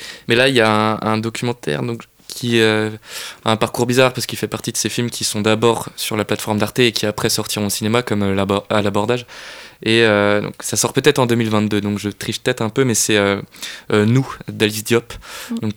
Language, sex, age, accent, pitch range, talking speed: French, male, 20-39, French, 105-115 Hz, 240 wpm